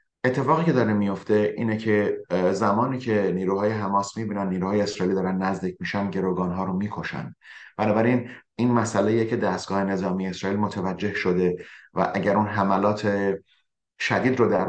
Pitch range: 95-110 Hz